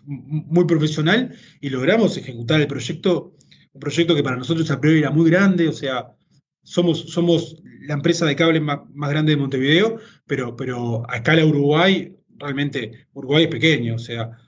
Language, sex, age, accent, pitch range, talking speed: Spanish, male, 20-39, Argentinian, 130-160 Hz, 170 wpm